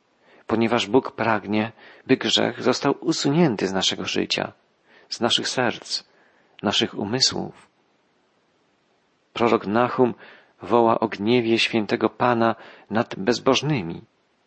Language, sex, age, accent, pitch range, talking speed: Polish, male, 40-59, native, 110-135 Hz, 100 wpm